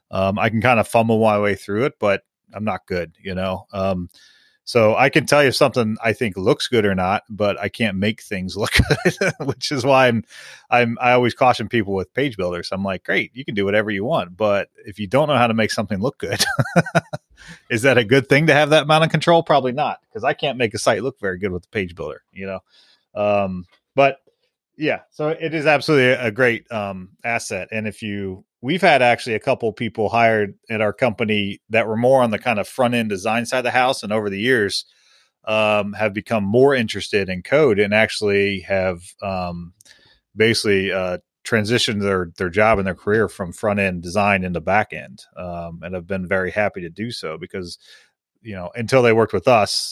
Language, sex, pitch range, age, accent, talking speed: English, male, 95-125 Hz, 30-49, American, 220 wpm